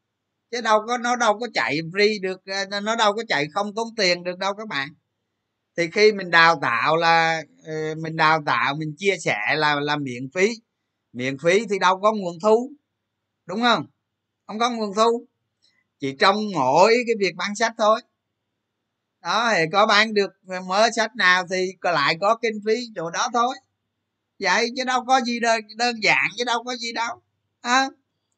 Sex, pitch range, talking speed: male, 135-215 Hz, 185 wpm